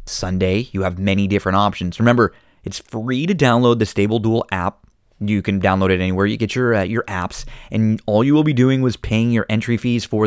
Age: 20-39